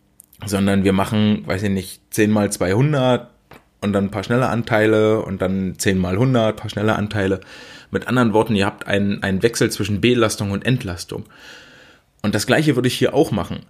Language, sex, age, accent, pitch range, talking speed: German, male, 20-39, German, 100-115 Hz, 190 wpm